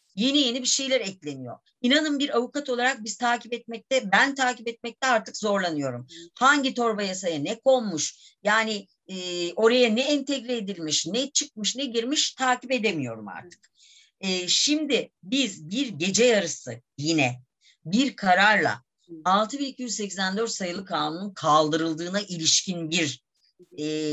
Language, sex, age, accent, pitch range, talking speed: Turkish, female, 50-69, native, 165-235 Hz, 125 wpm